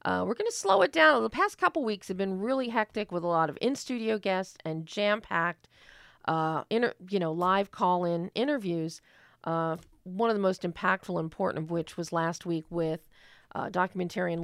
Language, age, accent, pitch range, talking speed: English, 40-59, American, 160-180 Hz, 190 wpm